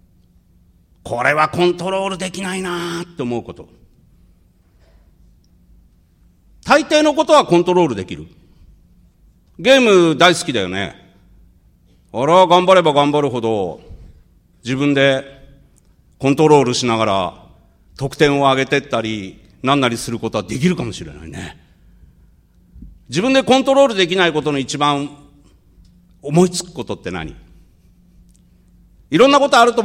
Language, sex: Japanese, male